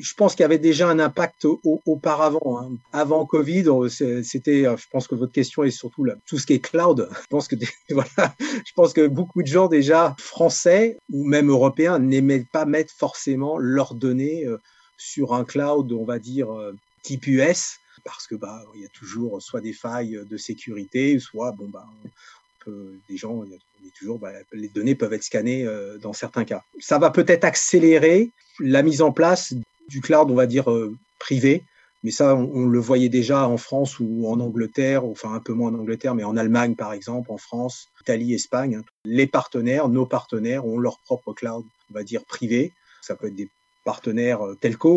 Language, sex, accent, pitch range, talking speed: French, male, French, 115-150 Hz, 195 wpm